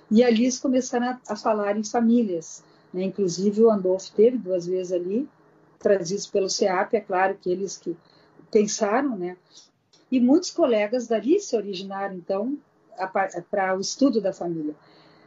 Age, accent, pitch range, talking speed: 50-69, Brazilian, 200-245 Hz, 150 wpm